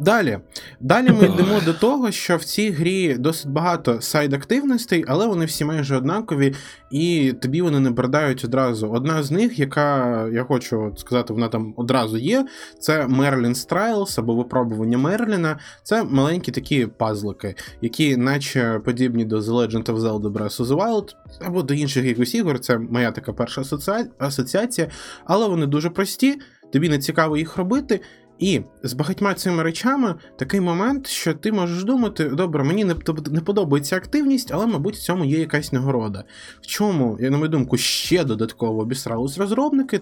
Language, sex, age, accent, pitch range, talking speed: Ukrainian, male, 20-39, native, 125-180 Hz, 165 wpm